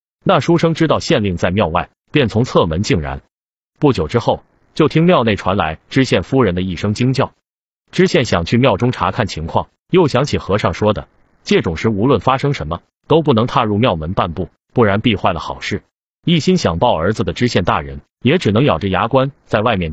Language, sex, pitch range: Chinese, male, 90-140 Hz